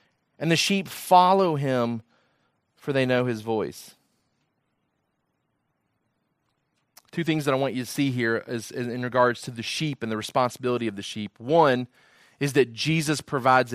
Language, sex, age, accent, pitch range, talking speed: English, male, 30-49, American, 125-160 Hz, 160 wpm